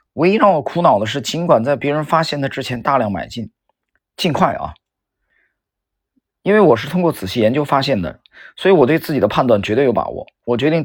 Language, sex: Chinese, male